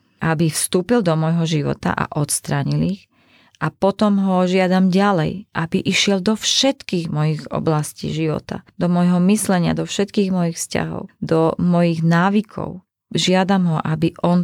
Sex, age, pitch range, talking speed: female, 30-49, 160-205 Hz, 140 wpm